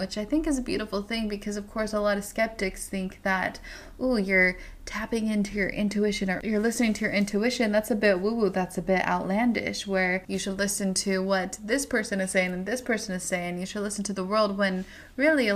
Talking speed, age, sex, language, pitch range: 230 wpm, 20-39, female, English, 190-235 Hz